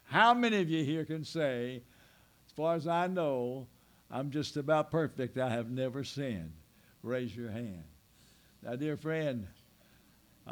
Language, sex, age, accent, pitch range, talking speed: English, male, 60-79, American, 130-170 Hz, 155 wpm